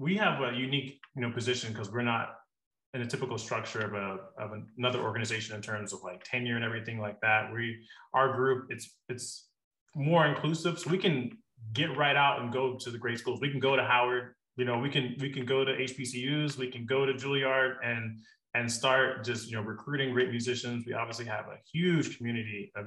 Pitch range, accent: 110-130 Hz, American